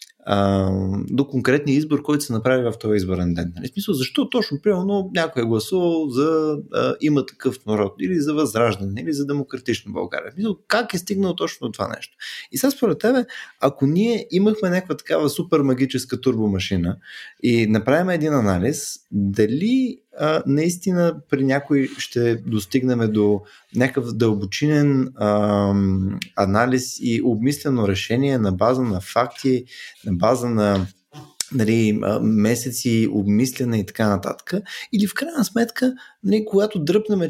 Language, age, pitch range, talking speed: Bulgarian, 20-39, 115-170 Hz, 140 wpm